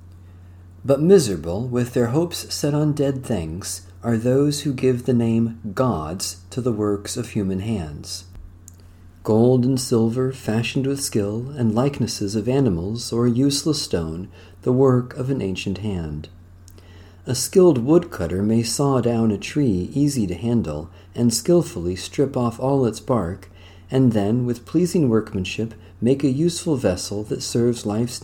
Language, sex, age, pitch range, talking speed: English, male, 40-59, 90-130 Hz, 150 wpm